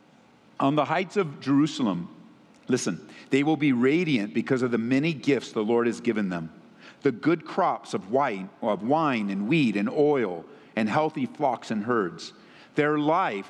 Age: 50-69